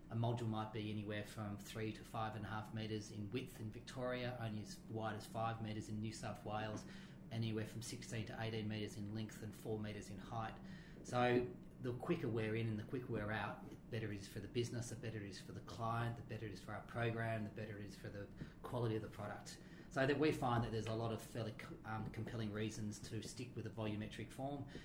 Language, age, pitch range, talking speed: English, 30-49, 110-120 Hz, 245 wpm